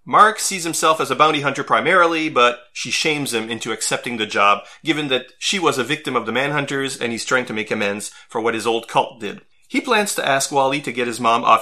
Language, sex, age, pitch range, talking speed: English, male, 30-49, 120-150 Hz, 245 wpm